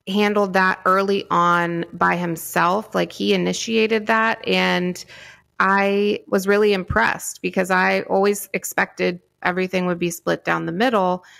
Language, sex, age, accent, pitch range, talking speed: English, female, 30-49, American, 170-195 Hz, 135 wpm